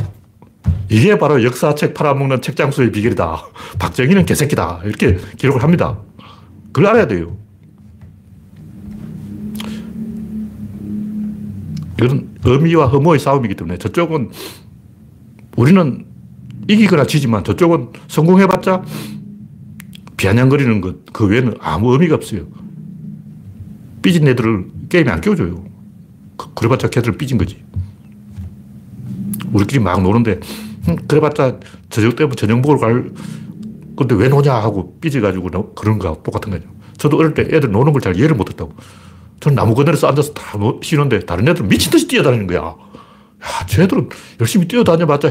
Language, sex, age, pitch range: Korean, male, 60-79, 105-150 Hz